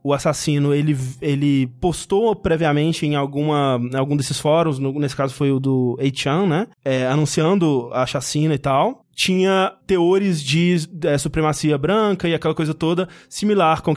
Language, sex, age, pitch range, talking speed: Portuguese, male, 20-39, 140-190 Hz, 155 wpm